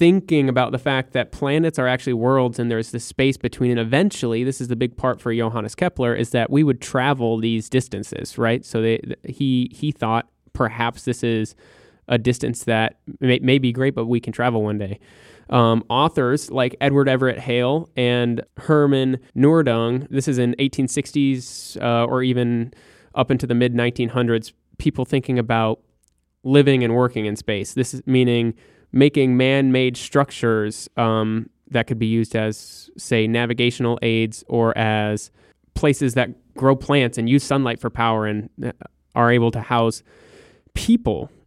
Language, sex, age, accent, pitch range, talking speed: English, male, 20-39, American, 115-135 Hz, 165 wpm